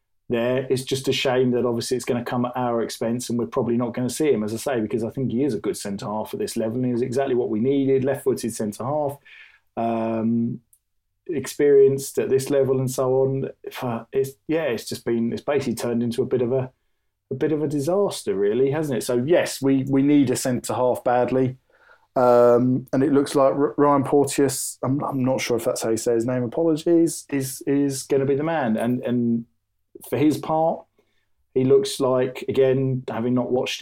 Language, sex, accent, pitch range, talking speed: English, male, British, 115-135 Hz, 215 wpm